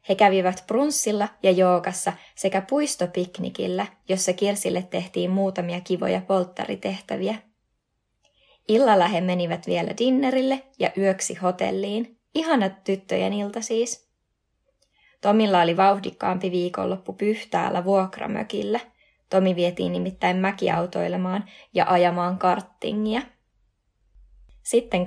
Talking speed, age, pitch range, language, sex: 95 wpm, 20-39, 180-205 Hz, Finnish, female